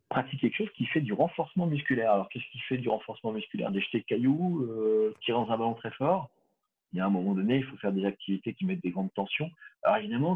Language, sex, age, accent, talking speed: French, male, 40-59, French, 255 wpm